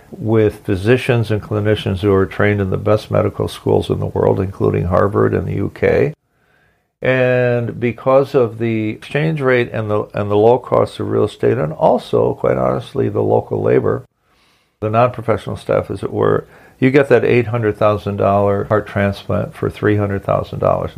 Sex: male